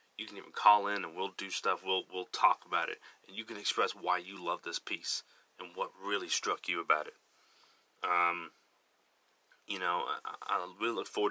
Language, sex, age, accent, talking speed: English, male, 30-49, American, 200 wpm